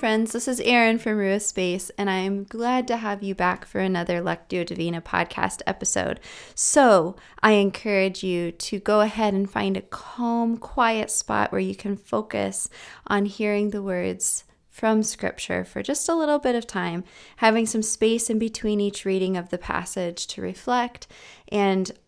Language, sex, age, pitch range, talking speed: English, female, 20-39, 180-215 Hz, 170 wpm